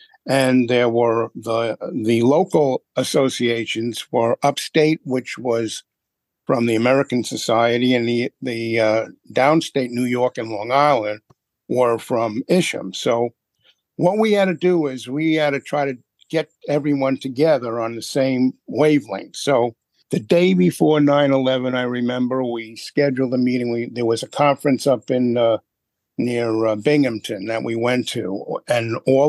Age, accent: 50-69, American